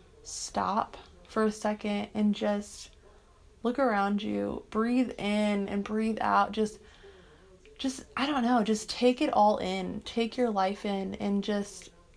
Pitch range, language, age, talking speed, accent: 205-240 Hz, English, 20-39, 150 wpm, American